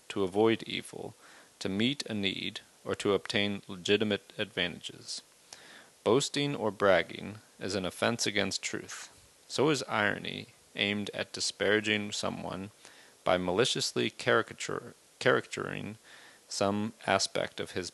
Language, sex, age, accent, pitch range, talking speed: English, male, 40-59, American, 100-120 Hz, 115 wpm